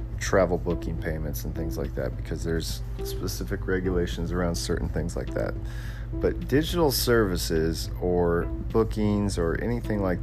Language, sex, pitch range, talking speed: English, male, 85-110 Hz, 140 wpm